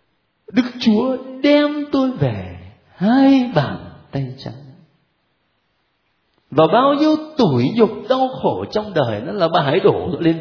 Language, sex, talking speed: Vietnamese, male, 140 wpm